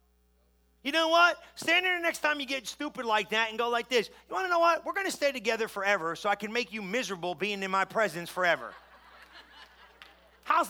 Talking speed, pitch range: 225 wpm, 225-300 Hz